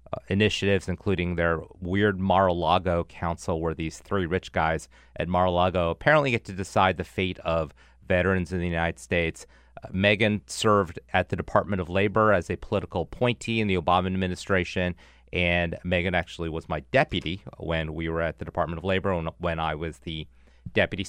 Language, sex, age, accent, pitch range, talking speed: English, male, 30-49, American, 85-105 Hz, 175 wpm